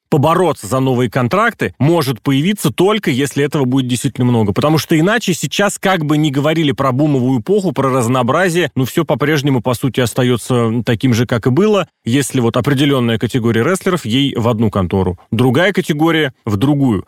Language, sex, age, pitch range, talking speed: Russian, male, 30-49, 125-180 Hz, 170 wpm